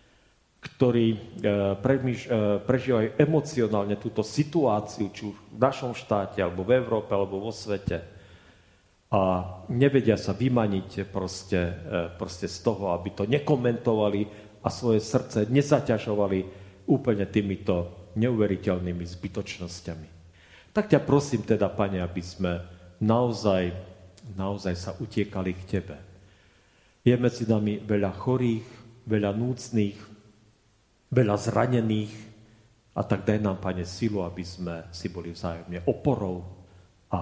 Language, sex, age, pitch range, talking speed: Slovak, male, 40-59, 90-115 Hz, 110 wpm